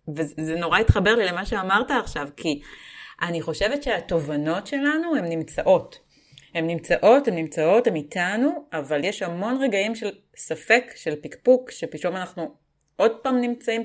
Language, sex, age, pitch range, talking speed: Hebrew, female, 30-49, 160-235 Hz, 145 wpm